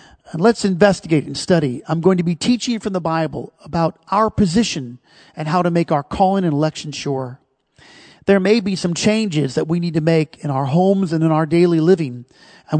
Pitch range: 140-180 Hz